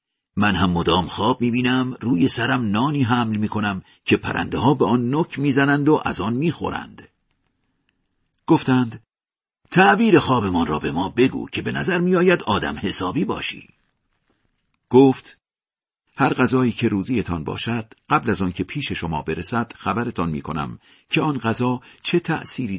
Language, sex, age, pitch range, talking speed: Persian, male, 50-69, 105-140 Hz, 145 wpm